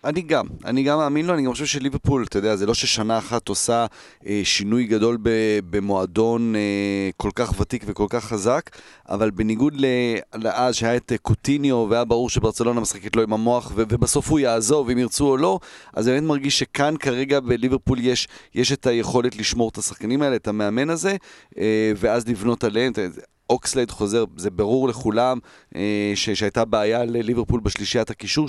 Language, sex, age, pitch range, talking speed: Hebrew, male, 30-49, 110-135 Hz, 165 wpm